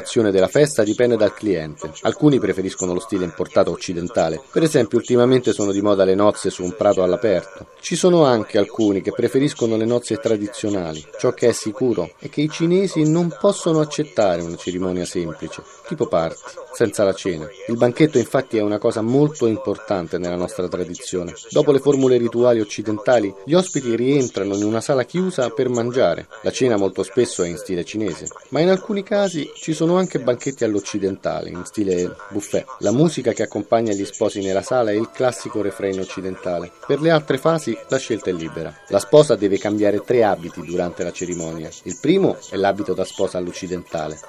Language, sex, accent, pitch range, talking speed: Italian, male, native, 95-140 Hz, 180 wpm